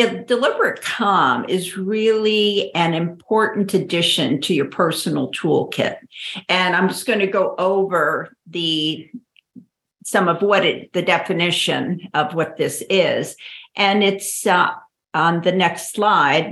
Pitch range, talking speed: 170-200 Hz, 135 wpm